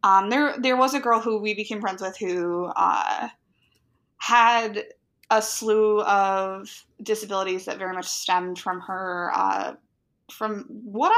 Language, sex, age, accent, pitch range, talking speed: English, female, 20-39, American, 180-225 Hz, 145 wpm